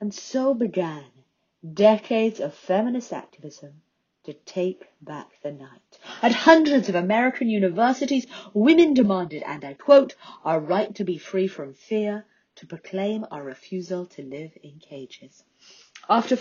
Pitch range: 180-250 Hz